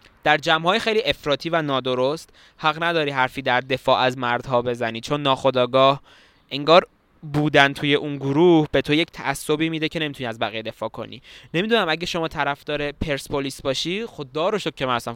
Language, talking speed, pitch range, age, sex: Persian, 170 wpm, 130-155 Hz, 20-39, male